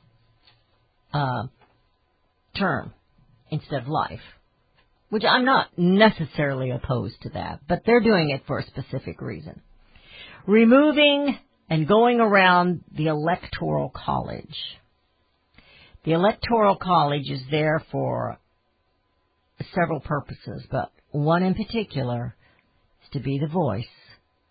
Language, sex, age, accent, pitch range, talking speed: English, female, 50-69, American, 120-195 Hz, 110 wpm